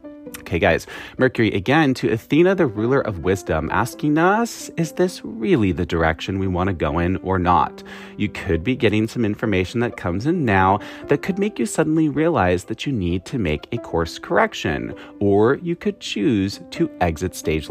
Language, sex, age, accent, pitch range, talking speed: English, male, 30-49, American, 90-140 Hz, 185 wpm